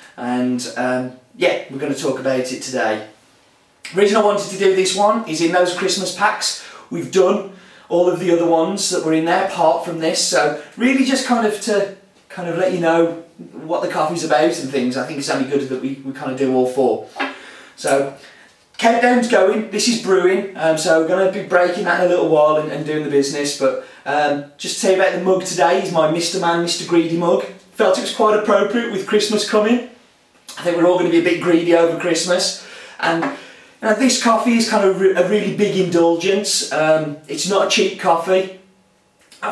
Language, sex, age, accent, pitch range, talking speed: English, male, 30-49, British, 150-190 Hz, 220 wpm